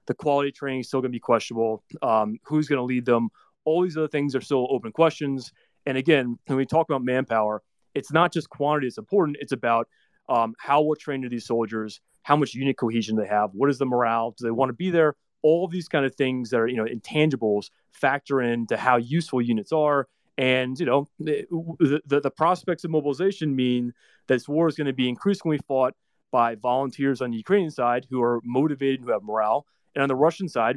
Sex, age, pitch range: male, 30-49, 120-145 Hz